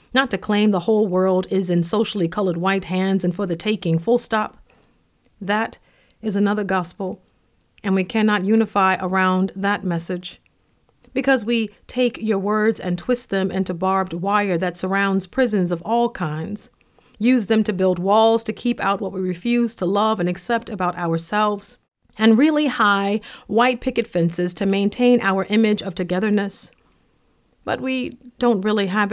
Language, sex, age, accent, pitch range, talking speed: English, female, 40-59, American, 185-220 Hz, 165 wpm